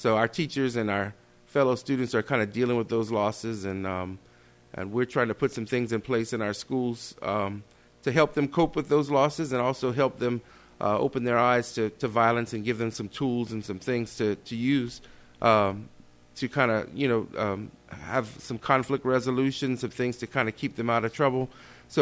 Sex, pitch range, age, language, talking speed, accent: male, 105-125 Hz, 30-49, English, 220 wpm, American